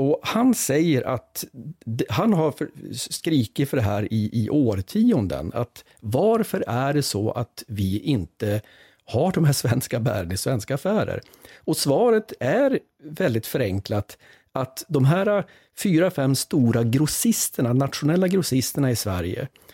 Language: Swedish